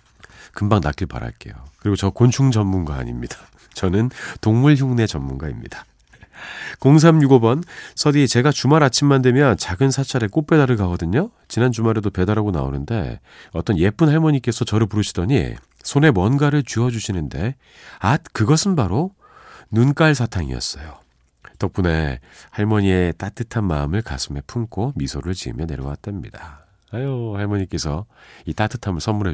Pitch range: 80-130 Hz